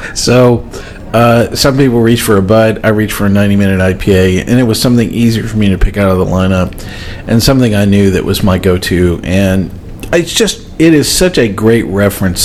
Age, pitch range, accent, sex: 50-69, 95-115 Hz, American, male